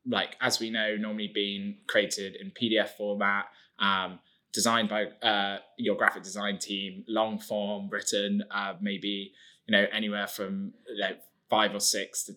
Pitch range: 100-130 Hz